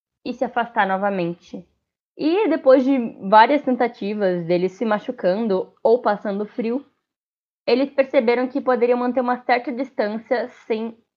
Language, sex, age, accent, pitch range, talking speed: Portuguese, female, 10-29, Brazilian, 200-260 Hz, 130 wpm